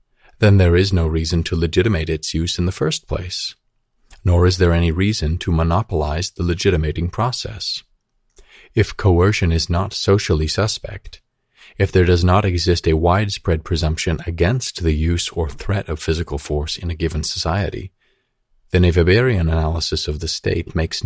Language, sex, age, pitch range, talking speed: English, male, 40-59, 80-100 Hz, 160 wpm